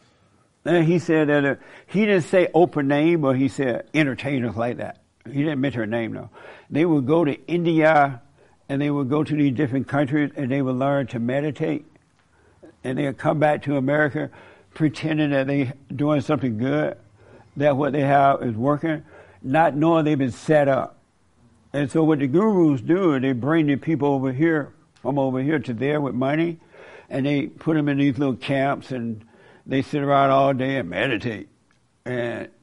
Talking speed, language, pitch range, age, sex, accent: 190 wpm, English, 130-155 Hz, 60-79, male, American